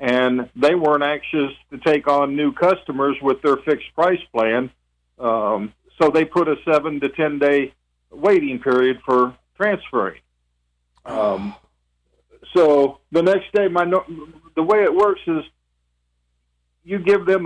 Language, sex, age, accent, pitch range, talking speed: English, male, 50-69, American, 110-155 Hz, 140 wpm